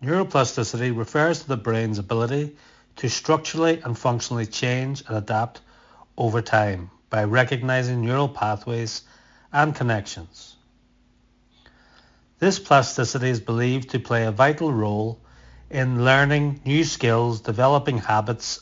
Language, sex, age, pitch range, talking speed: English, male, 40-59, 115-135 Hz, 115 wpm